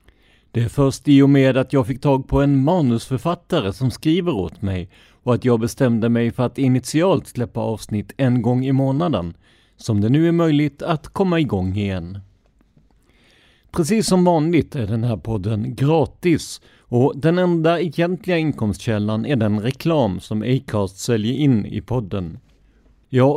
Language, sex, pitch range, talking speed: Swedish, male, 105-145 Hz, 160 wpm